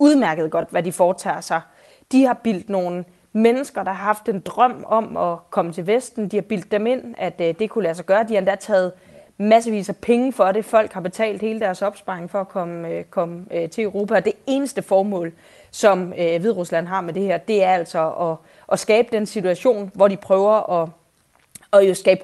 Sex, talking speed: female, 195 wpm